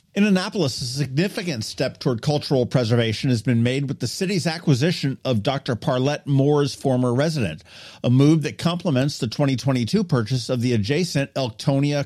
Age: 50-69